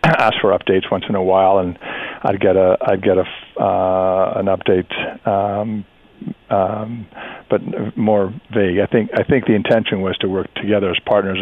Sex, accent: male, American